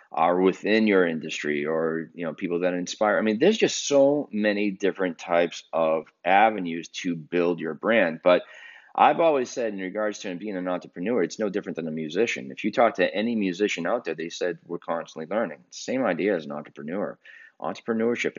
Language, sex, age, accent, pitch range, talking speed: English, male, 30-49, American, 85-120 Hz, 195 wpm